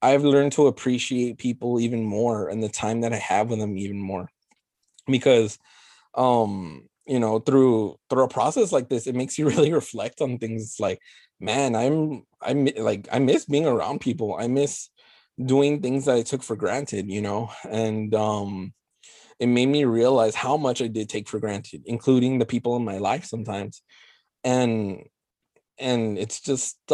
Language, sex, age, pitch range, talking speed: English, male, 20-39, 105-130 Hz, 175 wpm